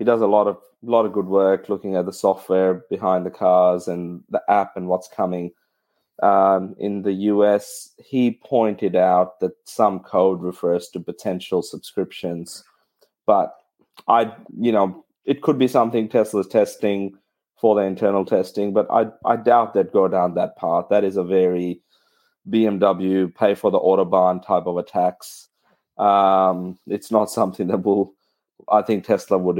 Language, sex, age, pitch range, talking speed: English, male, 30-49, 95-110 Hz, 165 wpm